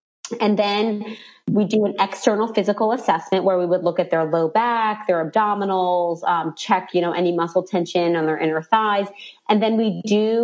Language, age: English, 30-49